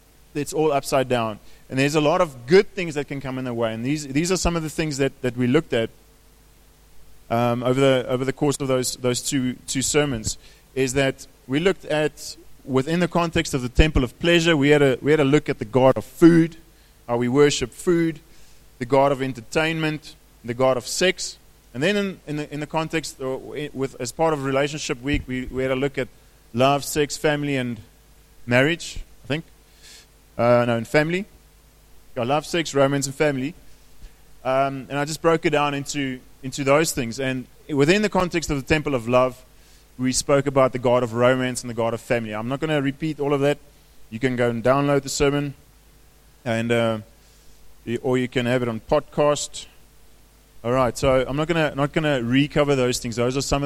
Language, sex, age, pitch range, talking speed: English, male, 30-49, 125-150 Hz, 210 wpm